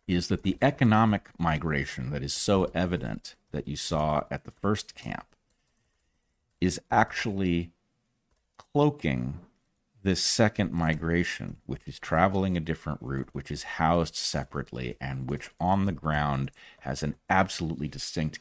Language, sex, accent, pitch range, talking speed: English, male, American, 75-95 Hz, 135 wpm